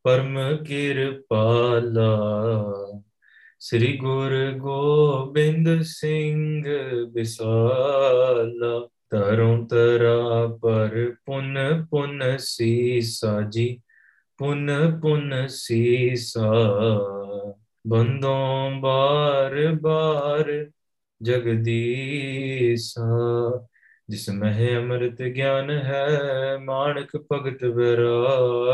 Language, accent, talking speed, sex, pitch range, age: English, Indian, 45 wpm, male, 120-140 Hz, 20-39